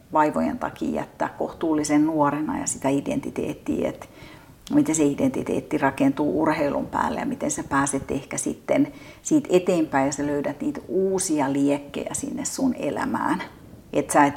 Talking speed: 145 wpm